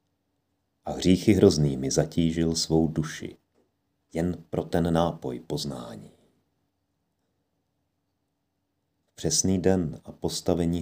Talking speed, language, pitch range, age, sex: 90 wpm, Czech, 75-95 Hz, 40-59, male